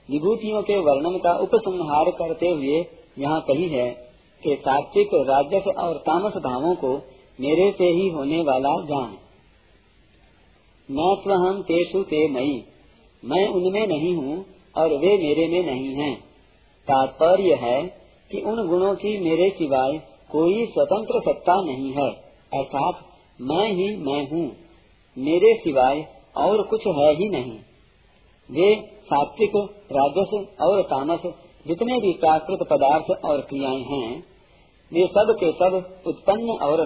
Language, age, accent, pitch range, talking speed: Hindi, 50-69, native, 145-195 Hz, 130 wpm